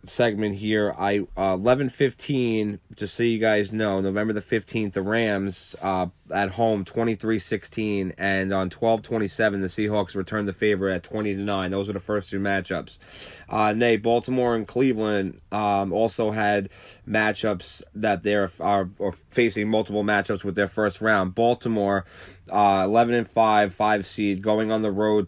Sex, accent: male, American